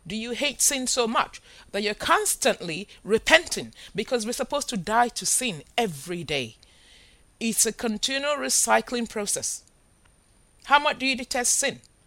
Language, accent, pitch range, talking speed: English, Nigerian, 170-255 Hz, 150 wpm